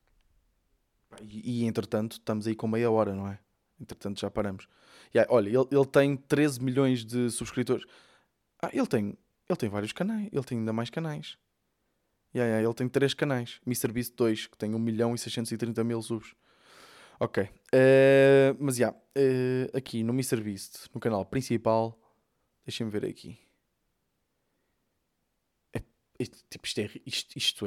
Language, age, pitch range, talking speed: Portuguese, 20-39, 110-135 Hz, 145 wpm